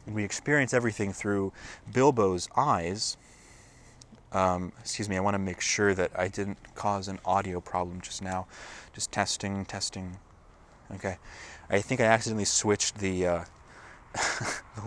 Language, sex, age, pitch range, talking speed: English, male, 20-39, 95-120 Hz, 135 wpm